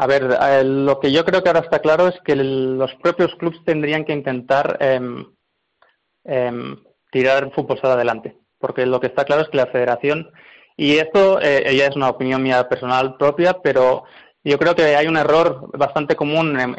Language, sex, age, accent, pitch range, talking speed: Spanish, male, 20-39, Spanish, 135-165 Hz, 190 wpm